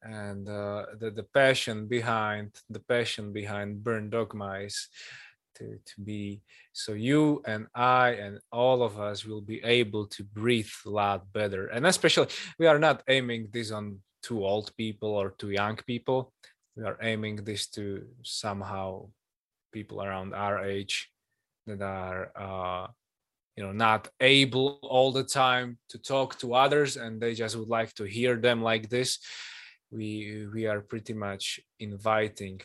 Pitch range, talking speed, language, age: 105-130 Hz, 160 wpm, Slovak, 20-39